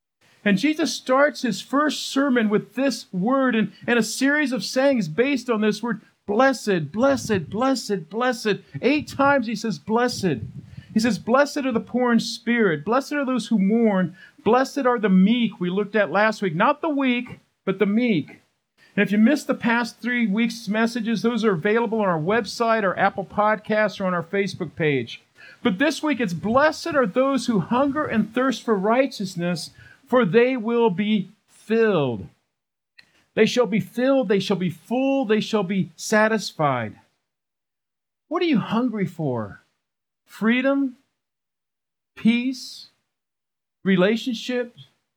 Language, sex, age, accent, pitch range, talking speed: English, male, 50-69, American, 195-255 Hz, 155 wpm